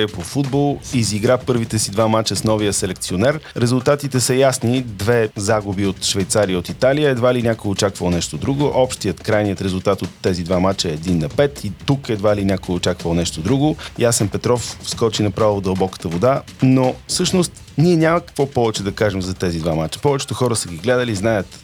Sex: male